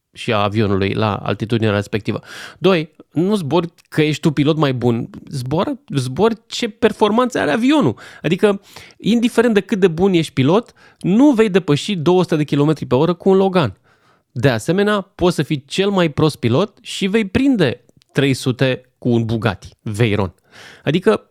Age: 30-49